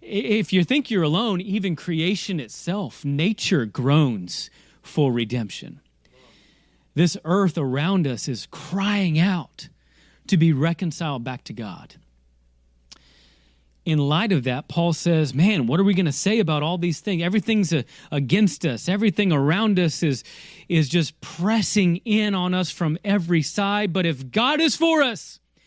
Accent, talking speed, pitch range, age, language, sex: American, 150 wpm, 155-225 Hz, 30-49, English, male